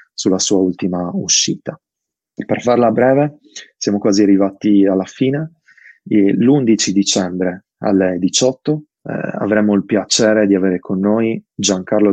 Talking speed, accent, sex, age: 135 wpm, native, male, 20-39